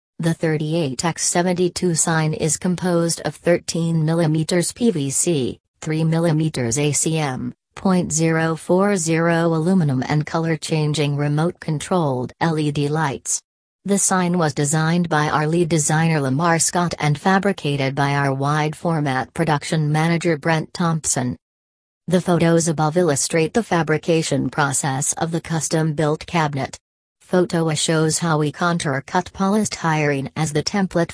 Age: 40-59